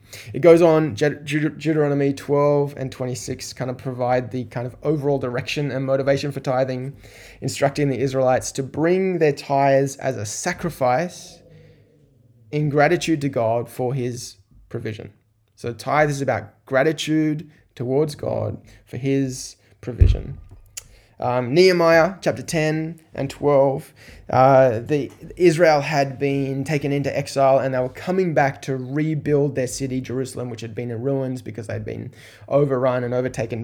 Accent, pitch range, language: Australian, 120-145 Hz, English